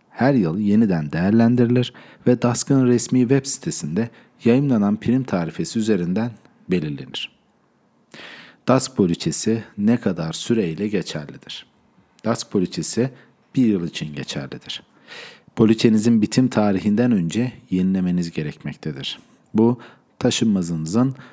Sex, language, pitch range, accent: male, Turkish, 95-130 Hz, native